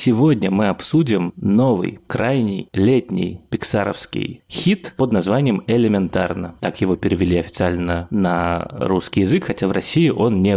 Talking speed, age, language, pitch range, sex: 130 wpm, 30-49, Russian, 90-110 Hz, male